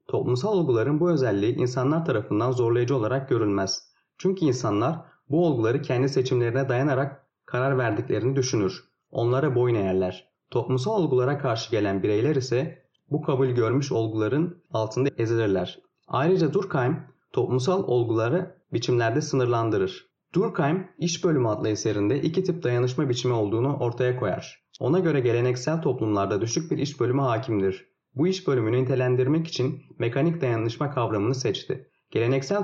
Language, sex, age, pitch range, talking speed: Turkish, male, 30-49, 115-155 Hz, 130 wpm